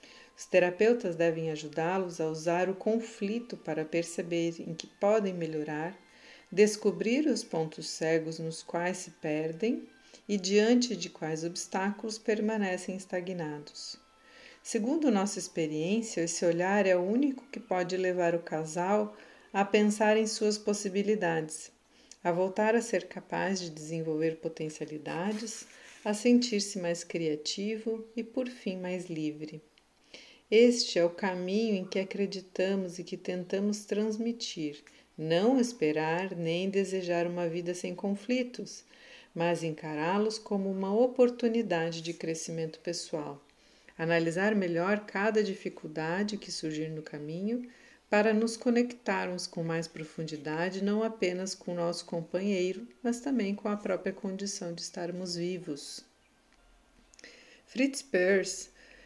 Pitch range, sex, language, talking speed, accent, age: 170-220 Hz, female, Portuguese, 125 wpm, Brazilian, 50-69